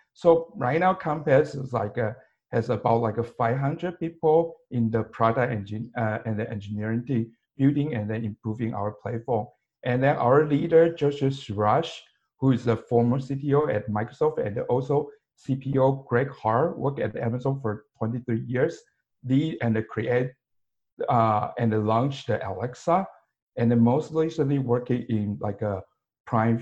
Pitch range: 110-140 Hz